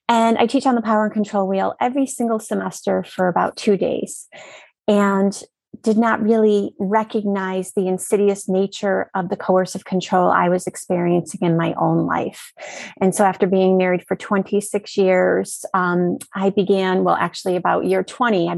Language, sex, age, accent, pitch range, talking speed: English, female, 30-49, American, 185-220 Hz, 170 wpm